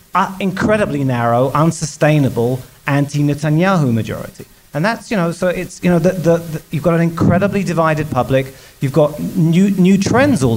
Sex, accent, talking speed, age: male, British, 165 wpm, 40-59